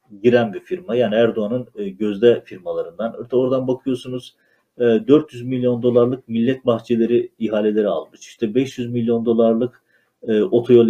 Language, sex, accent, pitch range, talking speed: Turkish, male, native, 110-135 Hz, 115 wpm